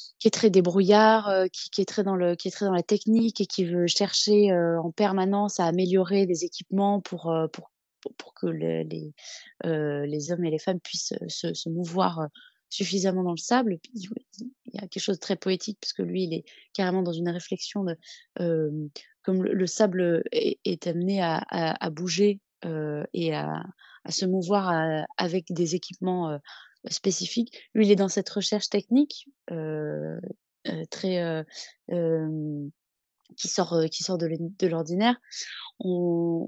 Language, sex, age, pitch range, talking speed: French, female, 20-39, 165-205 Hz, 185 wpm